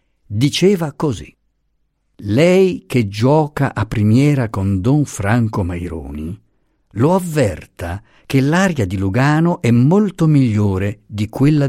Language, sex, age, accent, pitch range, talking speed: Italian, male, 50-69, native, 100-145 Hz, 115 wpm